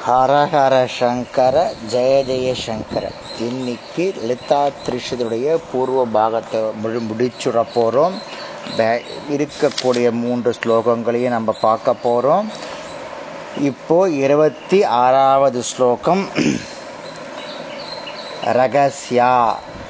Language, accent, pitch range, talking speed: Tamil, native, 120-145 Hz, 70 wpm